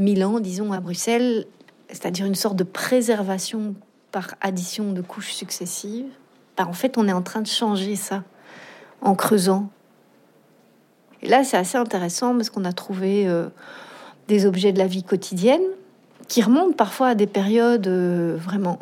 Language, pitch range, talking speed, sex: French, 185-220 Hz, 160 wpm, female